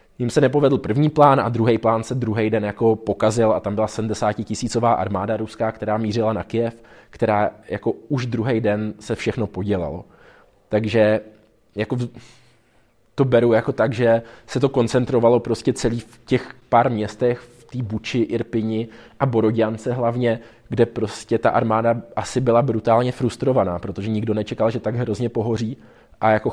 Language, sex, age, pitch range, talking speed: Czech, male, 20-39, 105-115 Hz, 160 wpm